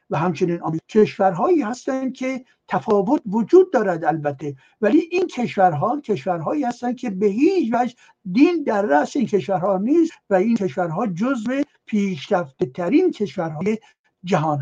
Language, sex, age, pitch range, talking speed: Persian, male, 60-79, 180-245 Hz, 130 wpm